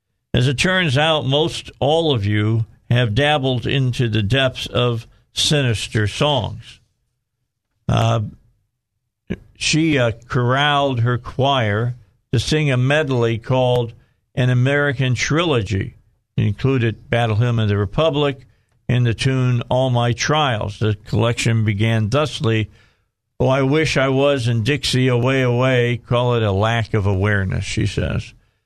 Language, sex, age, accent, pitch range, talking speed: English, male, 50-69, American, 115-140 Hz, 135 wpm